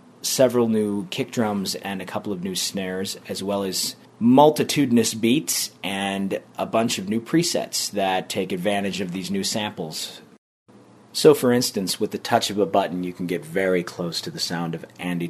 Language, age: English, 30-49